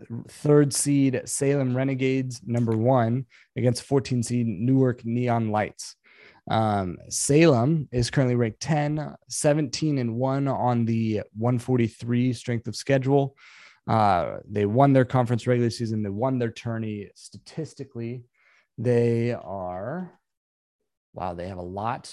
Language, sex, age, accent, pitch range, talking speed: English, male, 20-39, American, 110-130 Hz, 125 wpm